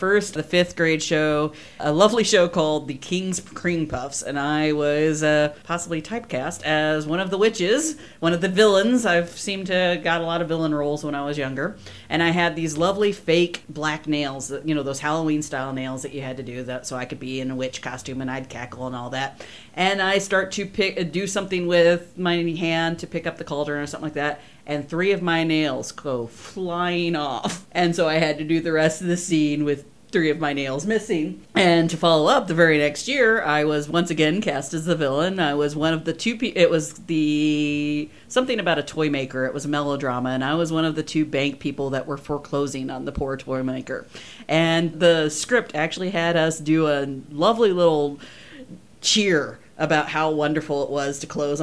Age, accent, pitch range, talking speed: 40-59, American, 145-170 Hz, 220 wpm